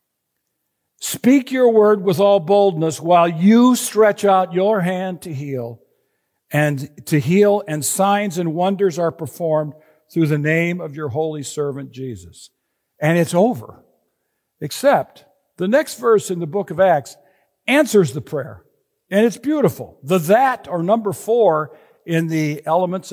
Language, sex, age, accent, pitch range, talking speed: English, male, 60-79, American, 155-210 Hz, 150 wpm